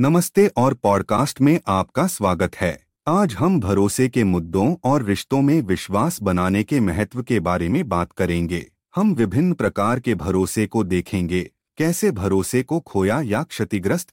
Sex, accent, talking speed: male, native, 155 wpm